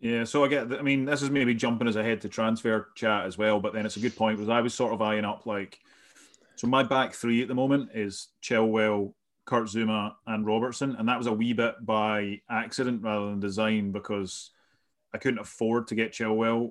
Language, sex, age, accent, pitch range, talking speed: English, male, 30-49, British, 105-120 Hz, 225 wpm